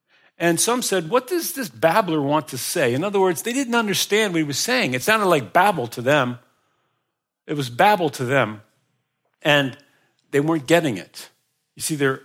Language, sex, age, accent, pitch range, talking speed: English, male, 50-69, American, 135-165 Hz, 190 wpm